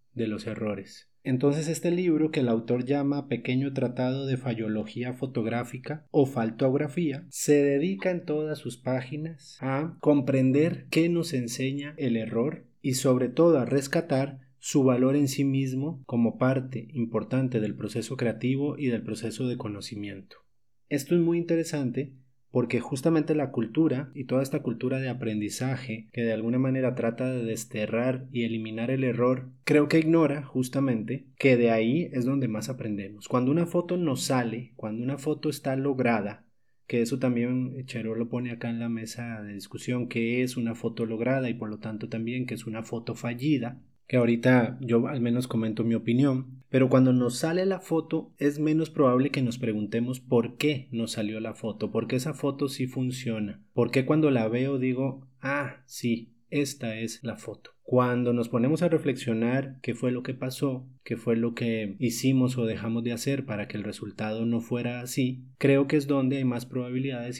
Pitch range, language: 115-140 Hz, Spanish